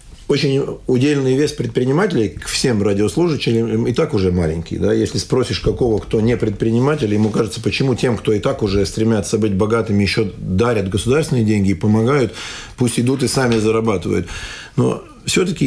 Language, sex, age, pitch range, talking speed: Russian, male, 40-59, 110-130 Hz, 155 wpm